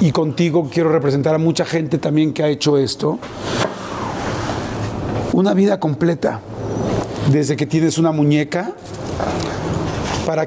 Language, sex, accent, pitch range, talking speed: Spanish, male, Mexican, 120-160 Hz, 120 wpm